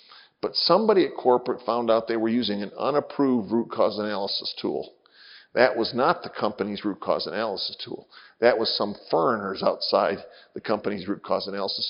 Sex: male